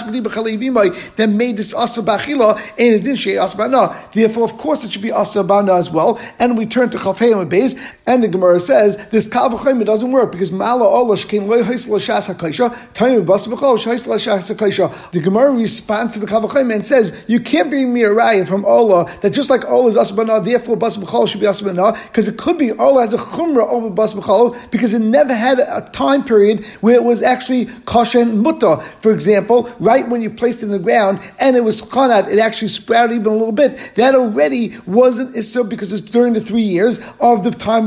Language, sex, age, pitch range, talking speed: English, male, 50-69, 210-245 Hz, 205 wpm